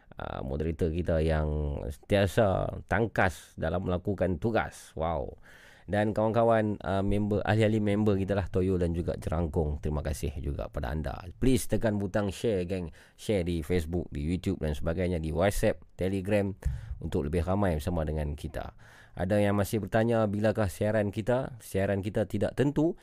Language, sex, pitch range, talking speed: Malay, male, 80-105 Hz, 155 wpm